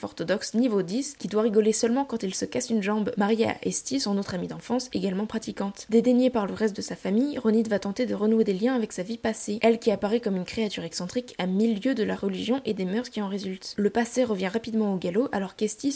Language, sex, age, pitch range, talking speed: French, female, 10-29, 200-235 Hz, 250 wpm